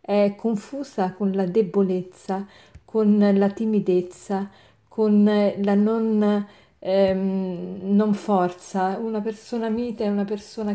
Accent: native